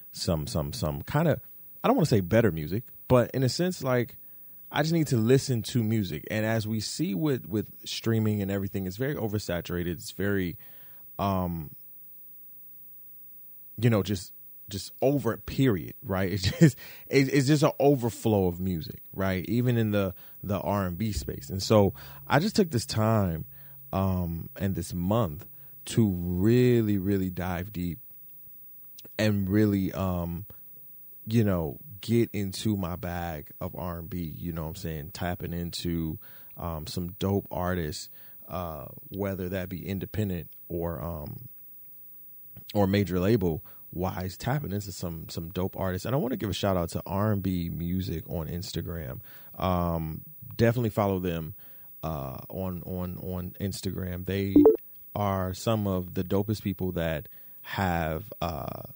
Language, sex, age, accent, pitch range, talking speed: English, male, 30-49, American, 90-110 Hz, 150 wpm